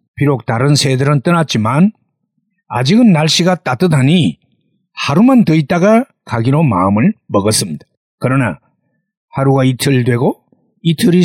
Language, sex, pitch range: Korean, male, 130-190 Hz